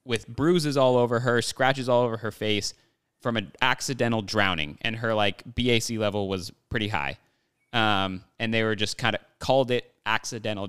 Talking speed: 180 wpm